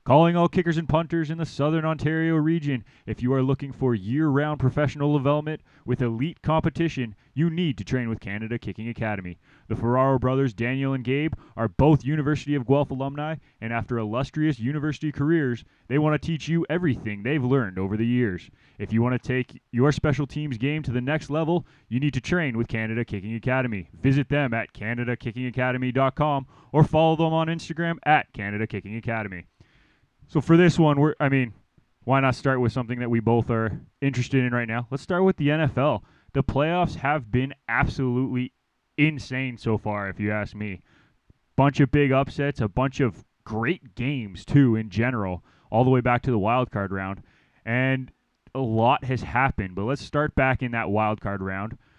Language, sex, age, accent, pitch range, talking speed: English, male, 20-39, American, 115-145 Hz, 185 wpm